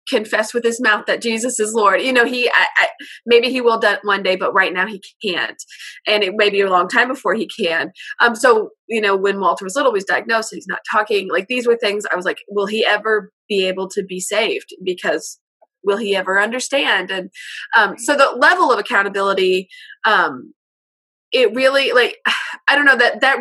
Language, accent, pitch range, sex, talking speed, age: English, American, 195-255 Hz, female, 215 wpm, 20-39